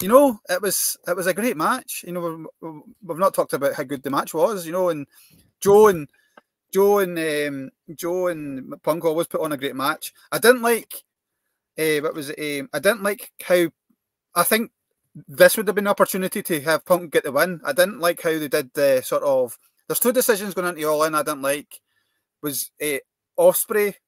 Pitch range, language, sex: 140-200 Hz, English, male